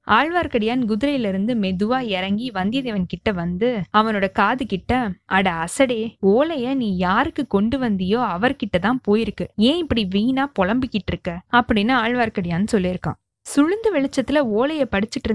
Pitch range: 200-265 Hz